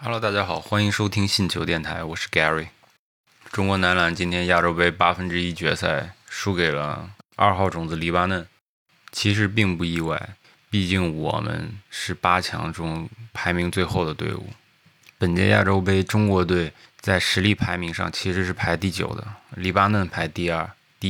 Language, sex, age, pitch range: Chinese, male, 20-39, 85-105 Hz